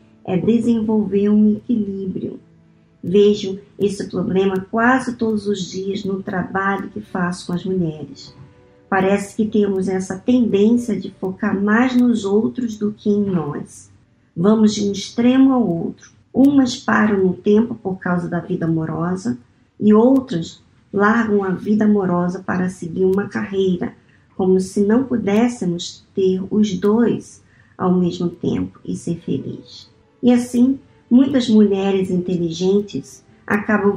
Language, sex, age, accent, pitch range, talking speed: Portuguese, male, 50-69, Brazilian, 185-215 Hz, 135 wpm